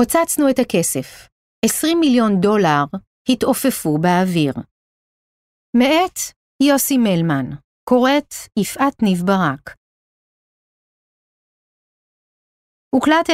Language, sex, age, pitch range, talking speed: Hebrew, female, 40-59, 175-255 Hz, 70 wpm